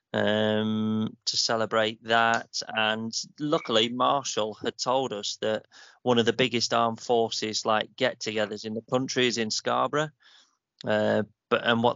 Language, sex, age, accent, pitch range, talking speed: English, male, 30-49, British, 110-125 Hz, 150 wpm